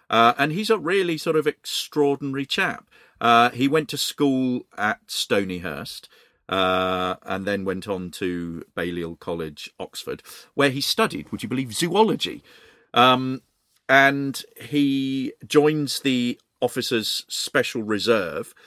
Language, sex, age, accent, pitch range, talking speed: English, male, 40-59, British, 95-130 Hz, 130 wpm